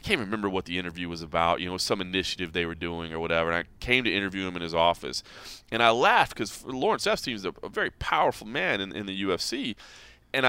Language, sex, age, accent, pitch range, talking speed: English, male, 30-49, American, 95-125 Hz, 245 wpm